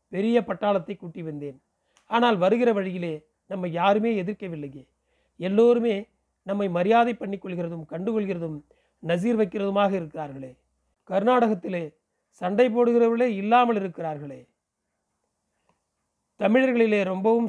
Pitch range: 175-220 Hz